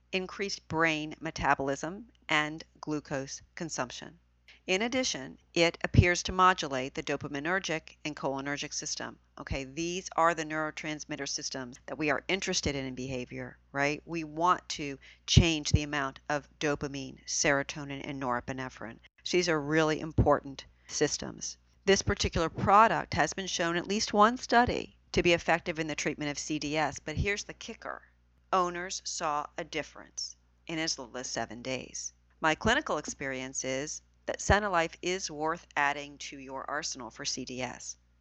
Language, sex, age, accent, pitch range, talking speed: English, female, 40-59, American, 135-165 Hz, 145 wpm